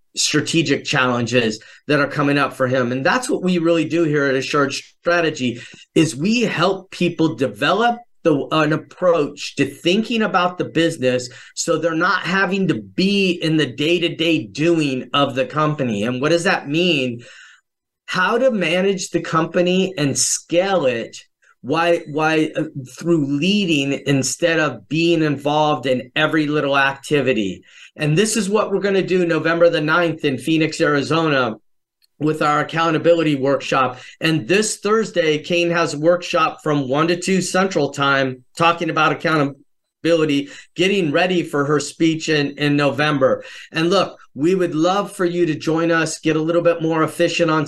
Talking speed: 160 wpm